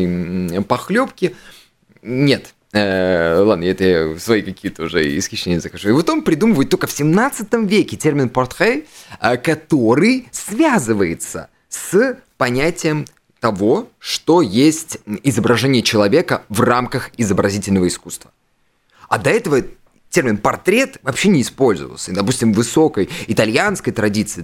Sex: male